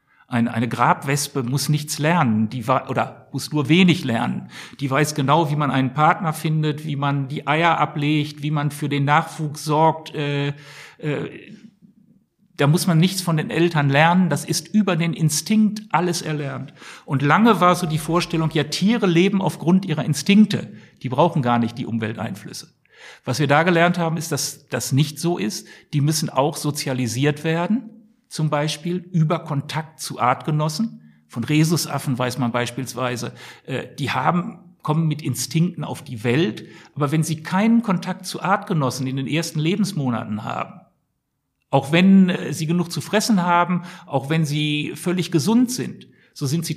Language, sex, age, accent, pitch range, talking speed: German, male, 60-79, German, 145-175 Hz, 165 wpm